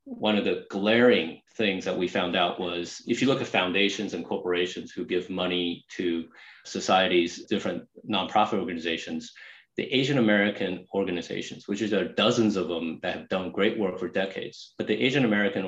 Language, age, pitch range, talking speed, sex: English, 30-49, 95-120 Hz, 180 wpm, male